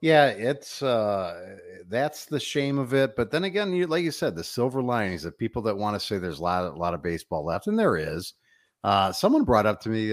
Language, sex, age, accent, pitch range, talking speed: English, male, 50-69, American, 90-135 Hz, 255 wpm